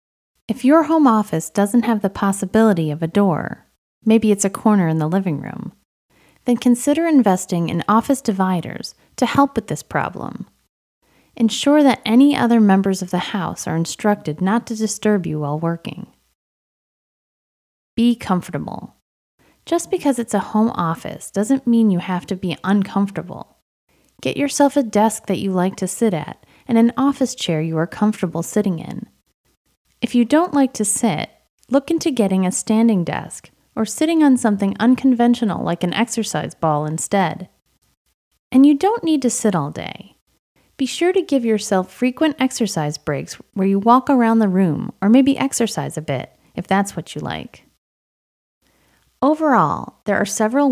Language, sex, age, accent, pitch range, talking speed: English, female, 30-49, American, 180-250 Hz, 165 wpm